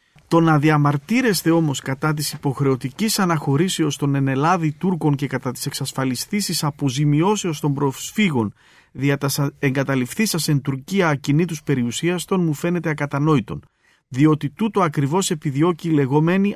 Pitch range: 135-170 Hz